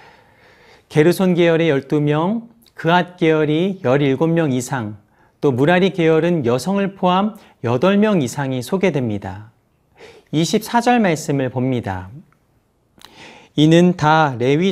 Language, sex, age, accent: Korean, male, 40-59, native